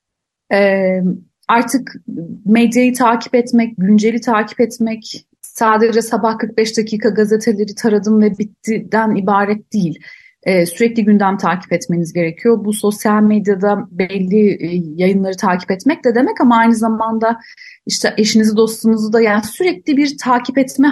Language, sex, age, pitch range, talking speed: Turkish, female, 30-49, 205-250 Hz, 130 wpm